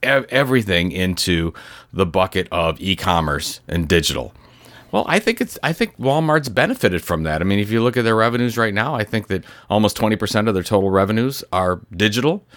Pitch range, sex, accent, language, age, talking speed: 90-115 Hz, male, American, English, 30-49, 190 wpm